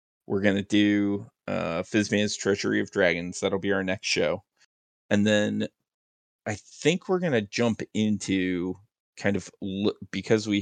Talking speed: 145 wpm